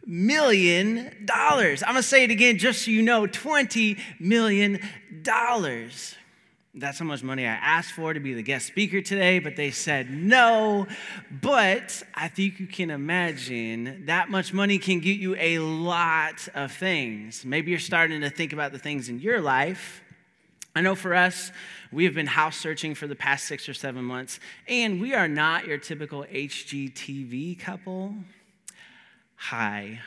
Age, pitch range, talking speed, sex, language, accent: 30-49, 140-200 Hz, 165 wpm, male, English, American